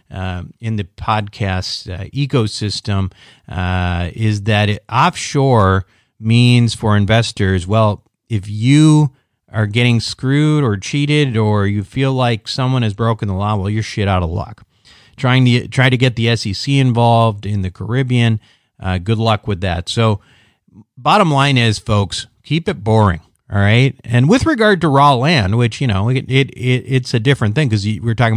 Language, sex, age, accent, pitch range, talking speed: English, male, 40-59, American, 105-130 Hz, 170 wpm